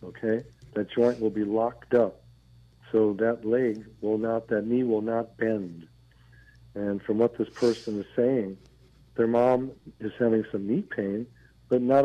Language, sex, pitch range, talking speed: English, male, 105-125 Hz, 165 wpm